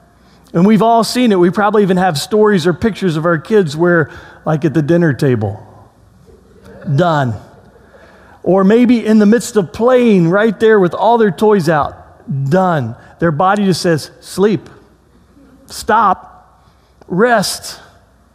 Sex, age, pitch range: male, 40-59, 140-200 Hz